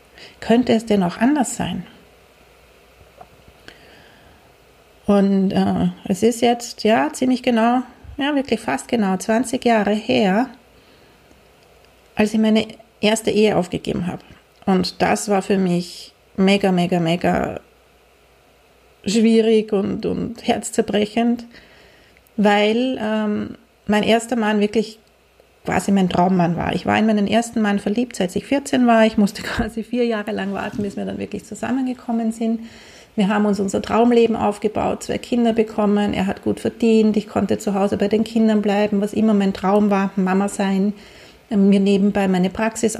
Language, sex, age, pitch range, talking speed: German, female, 40-59, 200-230 Hz, 150 wpm